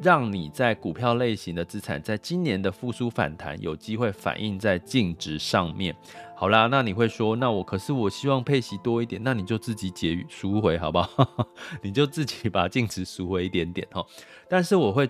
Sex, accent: male, native